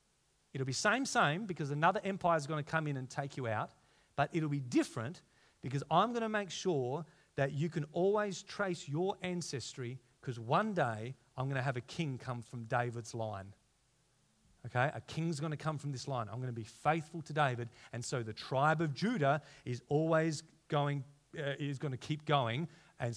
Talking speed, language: 200 wpm, English